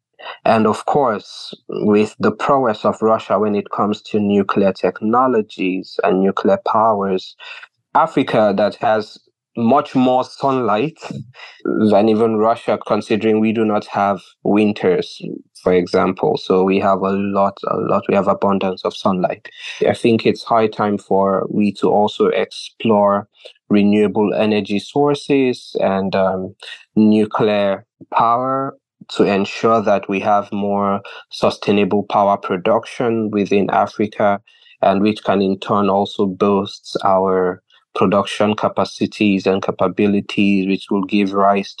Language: English